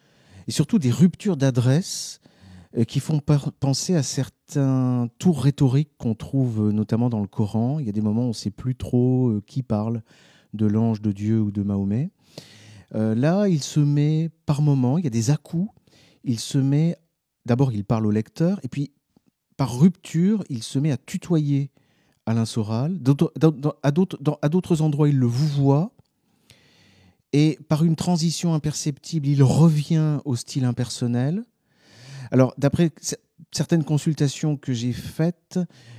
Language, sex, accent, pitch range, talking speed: French, male, French, 110-150 Hz, 170 wpm